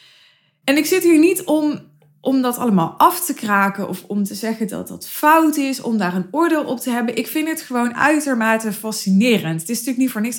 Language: Dutch